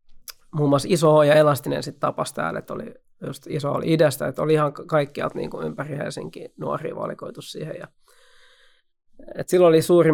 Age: 20-39